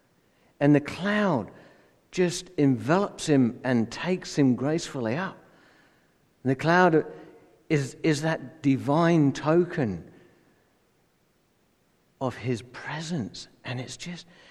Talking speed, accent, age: 105 wpm, British, 60-79